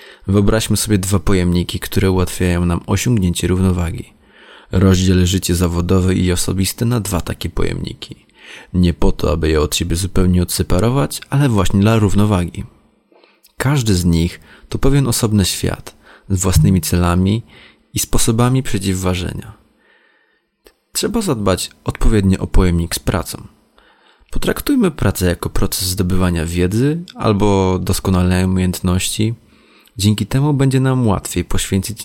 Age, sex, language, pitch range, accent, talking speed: 20-39, male, Polish, 90-110 Hz, native, 125 wpm